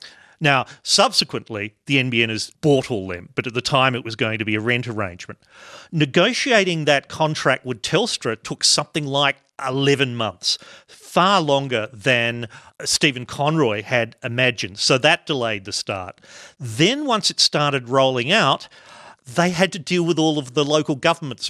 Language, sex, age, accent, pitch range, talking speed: English, male, 40-59, Australian, 115-155 Hz, 160 wpm